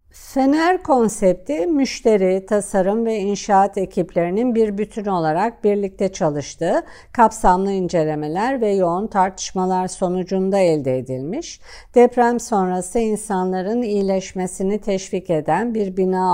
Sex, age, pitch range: female, 50-69, 175-220 Hz